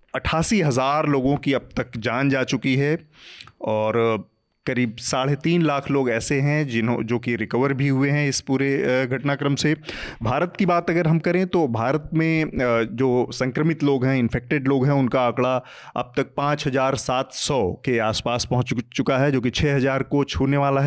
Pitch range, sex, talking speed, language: 120-140 Hz, male, 185 wpm, Hindi